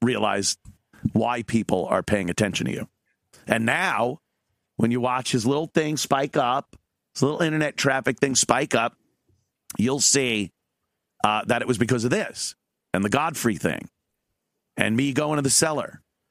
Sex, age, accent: male, 40-59, American